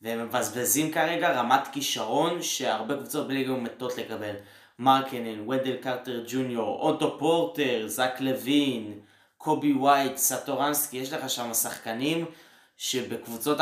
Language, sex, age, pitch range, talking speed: Hebrew, male, 20-39, 120-145 Hz, 110 wpm